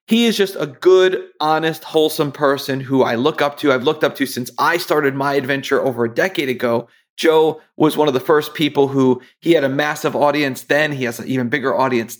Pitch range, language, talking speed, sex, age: 130-160 Hz, English, 225 wpm, male, 40-59